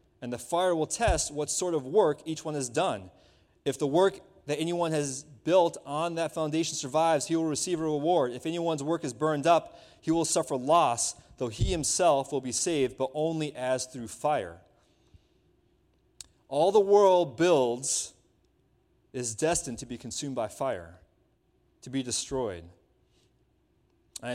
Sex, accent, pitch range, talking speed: male, American, 125-165 Hz, 160 wpm